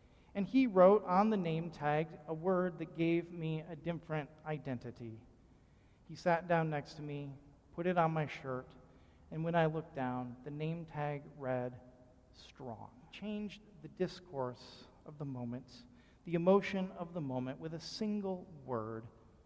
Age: 40-59